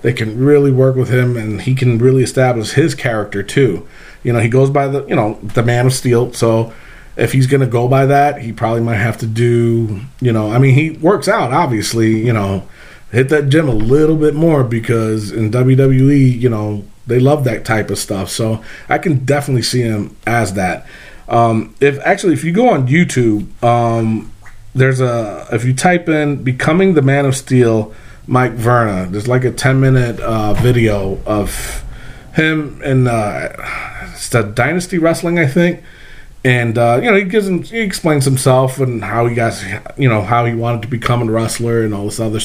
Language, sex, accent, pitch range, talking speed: English, male, American, 115-140 Hz, 200 wpm